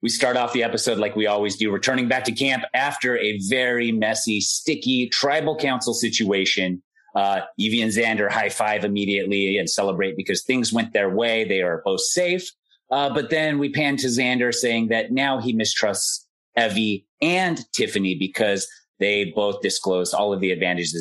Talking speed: 175 wpm